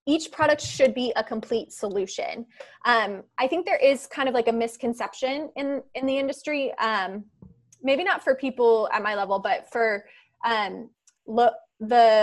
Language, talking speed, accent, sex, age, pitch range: English, 165 wpm, American, female, 20-39, 220-260 Hz